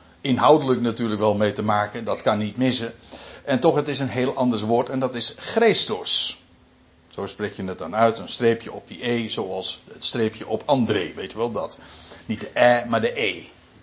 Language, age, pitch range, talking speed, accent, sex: Dutch, 60-79, 105-145 Hz, 210 wpm, Dutch, male